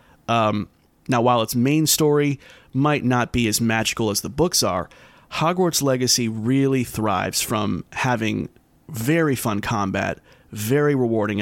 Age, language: 30-49, English